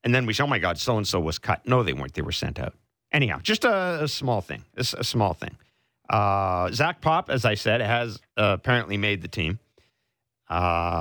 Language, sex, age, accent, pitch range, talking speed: English, male, 50-69, American, 80-110 Hz, 220 wpm